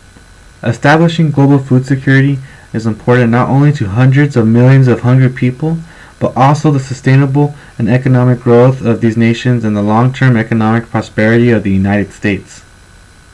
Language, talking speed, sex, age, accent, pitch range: English, 155 wpm, male, 20-39, American, 105-130 Hz